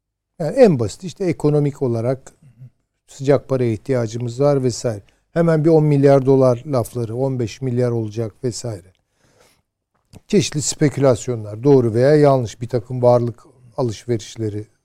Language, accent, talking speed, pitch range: Turkish, native, 120 wpm, 110-145 Hz